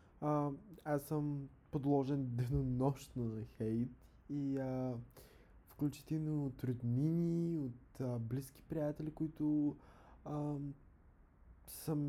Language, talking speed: Bulgarian, 95 wpm